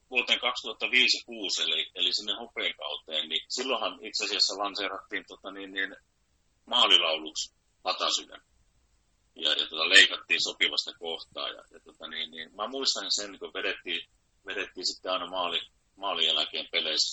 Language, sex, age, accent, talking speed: Finnish, male, 30-49, native, 140 wpm